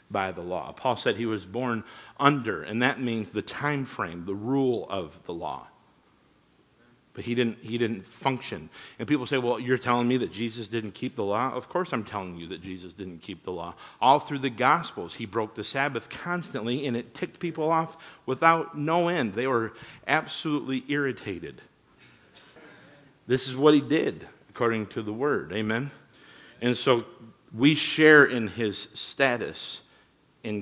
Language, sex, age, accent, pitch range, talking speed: English, male, 50-69, American, 110-145 Hz, 175 wpm